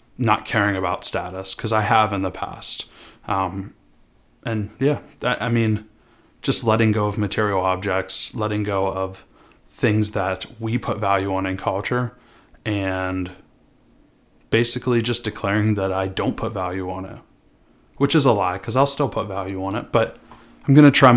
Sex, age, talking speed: male, 20-39, 165 wpm